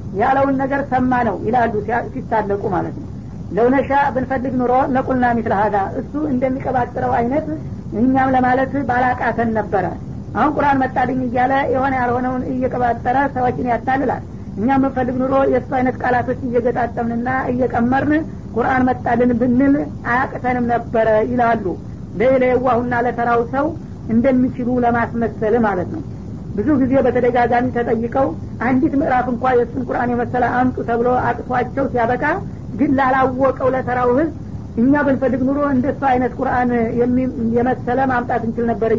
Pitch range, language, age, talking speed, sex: 235-260 Hz, Amharic, 50-69, 120 wpm, female